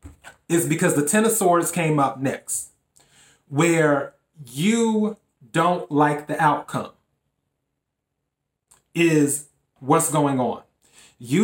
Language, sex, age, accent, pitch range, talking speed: English, male, 30-49, American, 140-175 Hz, 105 wpm